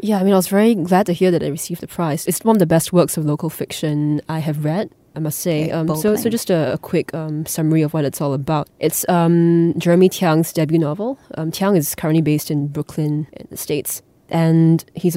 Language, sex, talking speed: English, female, 240 wpm